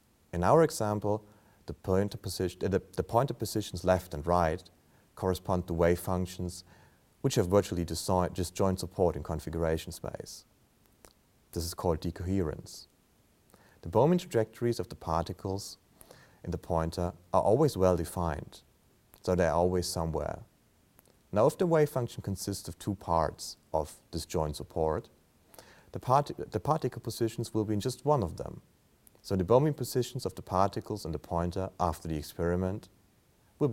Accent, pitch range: German, 85-110 Hz